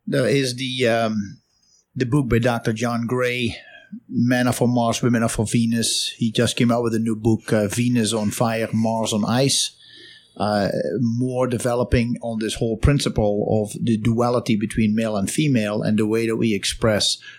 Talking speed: 185 wpm